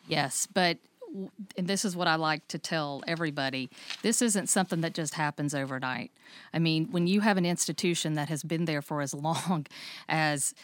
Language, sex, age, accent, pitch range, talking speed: English, female, 50-69, American, 160-200 Hz, 180 wpm